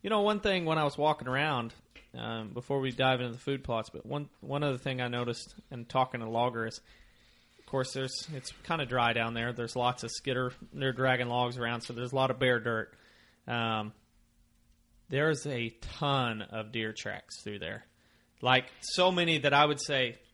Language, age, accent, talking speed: English, 30-49, American, 205 wpm